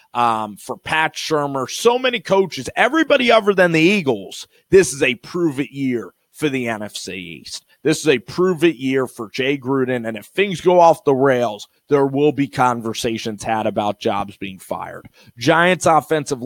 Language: English